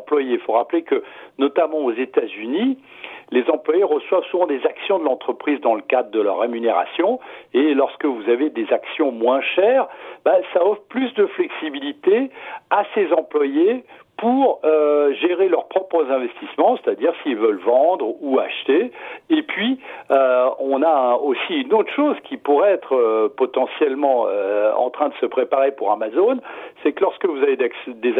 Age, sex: 60-79, male